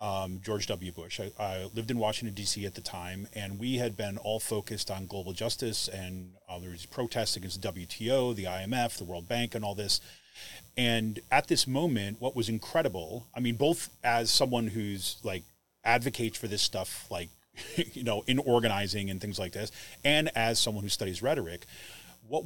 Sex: male